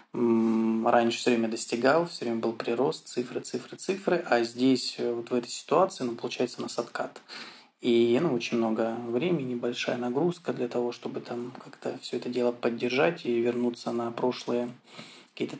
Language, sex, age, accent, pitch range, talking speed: Russian, male, 20-39, native, 115-125 Hz, 165 wpm